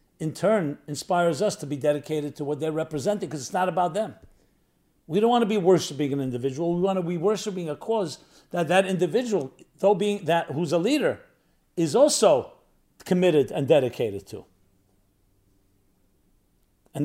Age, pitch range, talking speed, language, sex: 50-69, 145-195 Hz, 165 wpm, English, male